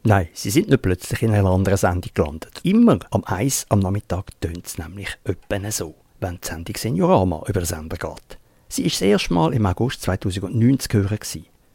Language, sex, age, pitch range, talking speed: English, male, 50-69, 95-125 Hz, 185 wpm